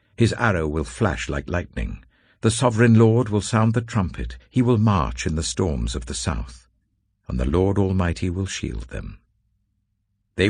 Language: English